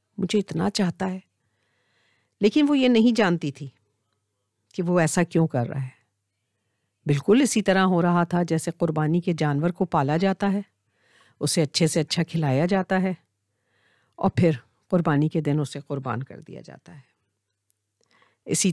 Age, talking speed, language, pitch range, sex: 50-69, 160 wpm, Urdu, 125-180 Hz, female